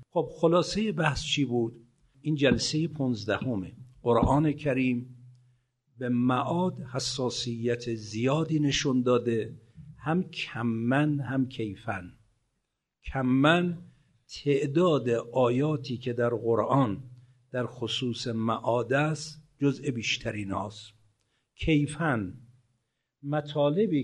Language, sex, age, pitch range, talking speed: Persian, male, 50-69, 115-145 Hz, 85 wpm